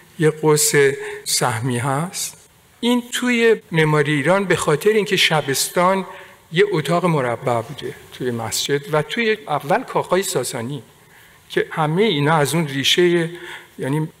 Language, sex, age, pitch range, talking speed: Persian, male, 60-79, 140-185 Hz, 125 wpm